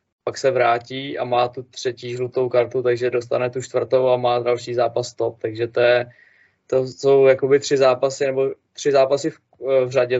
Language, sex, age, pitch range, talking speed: Czech, male, 20-39, 120-130 Hz, 180 wpm